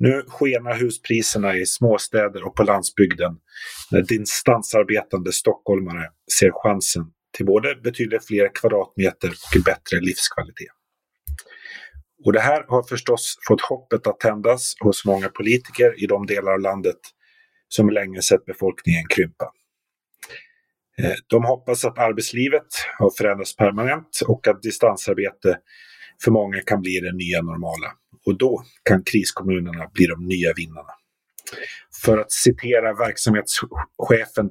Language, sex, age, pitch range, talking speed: Swedish, male, 30-49, 95-125 Hz, 125 wpm